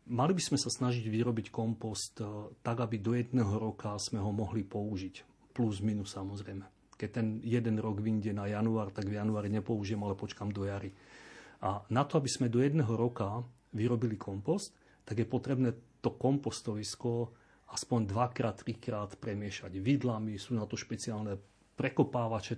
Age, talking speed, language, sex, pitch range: 40-59, 155 wpm, Slovak, male, 105-125 Hz